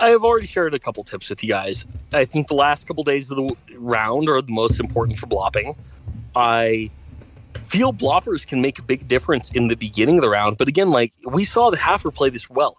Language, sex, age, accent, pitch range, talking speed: English, male, 30-49, American, 115-175 Hz, 230 wpm